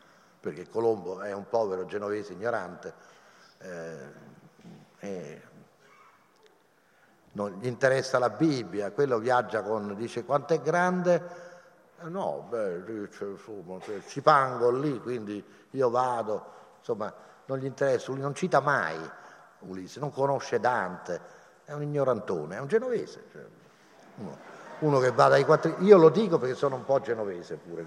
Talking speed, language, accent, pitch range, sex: 130 wpm, Italian, native, 110-175 Hz, male